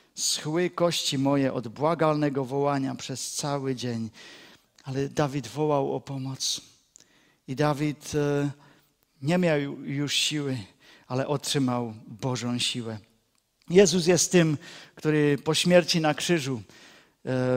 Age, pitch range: 50-69, 130-160 Hz